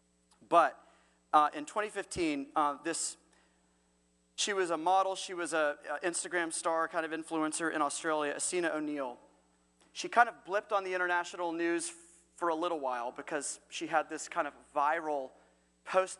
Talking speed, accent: 160 wpm, American